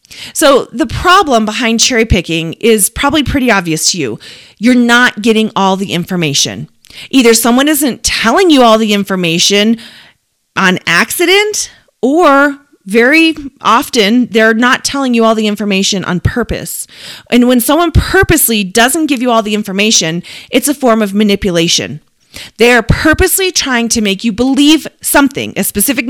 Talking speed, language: 150 wpm, English